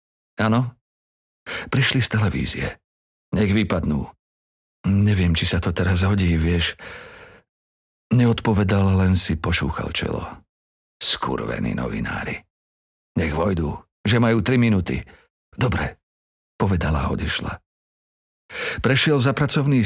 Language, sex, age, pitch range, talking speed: Slovak, male, 50-69, 75-110 Hz, 95 wpm